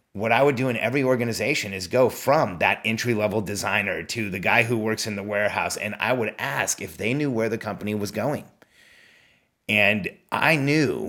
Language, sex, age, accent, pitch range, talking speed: English, male, 30-49, American, 105-125 Hz, 200 wpm